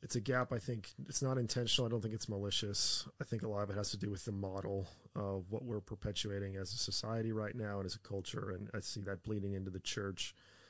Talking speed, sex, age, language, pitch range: 260 wpm, male, 30-49, English, 100-110 Hz